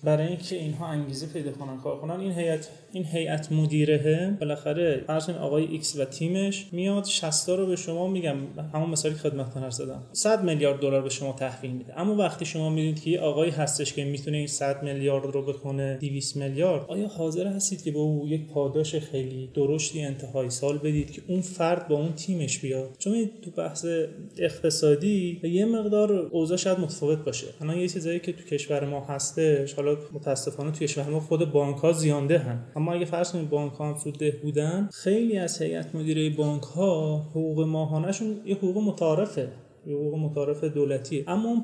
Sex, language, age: male, Persian, 30-49